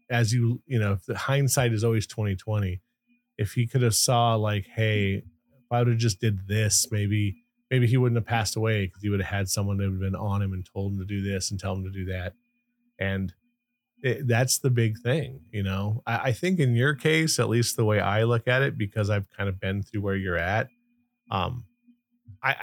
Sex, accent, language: male, American, English